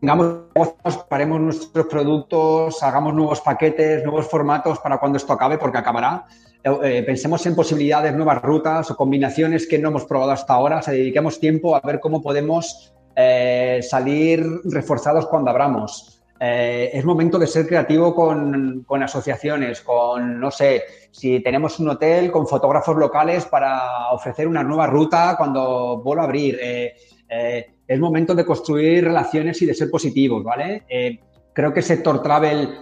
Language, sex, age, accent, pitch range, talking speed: Spanish, male, 30-49, Spanish, 135-160 Hz, 155 wpm